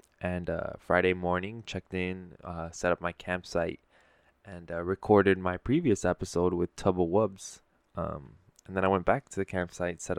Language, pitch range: English, 90-105 Hz